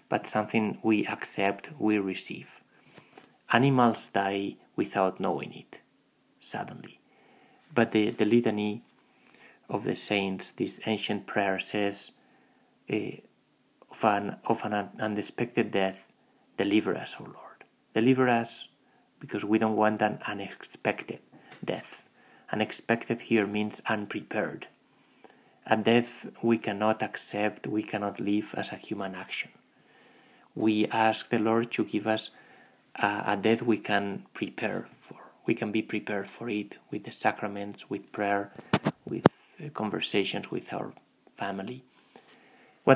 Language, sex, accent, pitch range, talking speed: English, male, Spanish, 105-115 Hz, 130 wpm